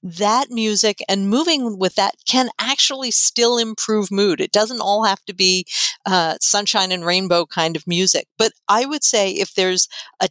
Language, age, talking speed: English, 50-69, 180 wpm